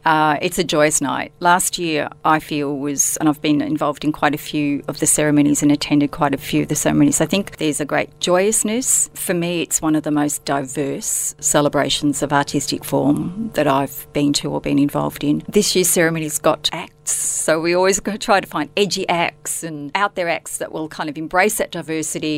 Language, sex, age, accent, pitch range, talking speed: English, female, 40-59, Australian, 145-170 Hz, 210 wpm